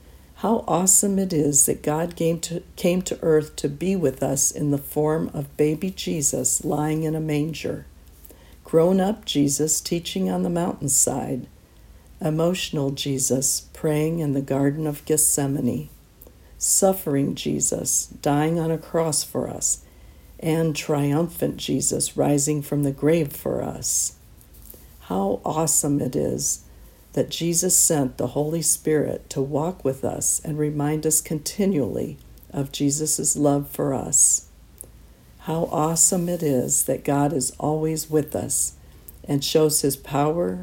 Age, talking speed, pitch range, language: 60-79, 135 wpm, 130-160 Hz, English